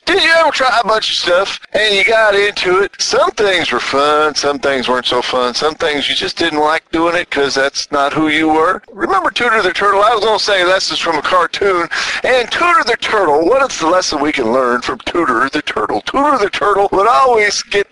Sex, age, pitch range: male, 50-69, 140-235 Hz